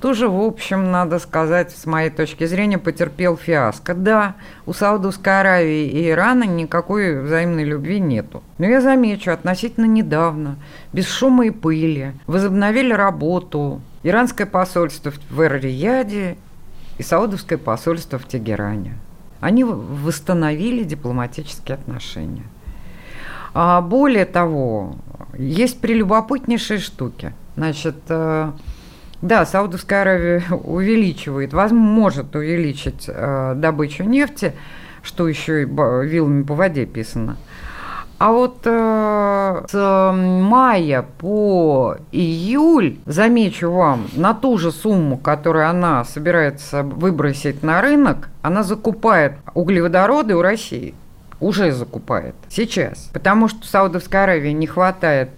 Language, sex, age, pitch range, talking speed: Russian, female, 50-69, 150-205 Hz, 115 wpm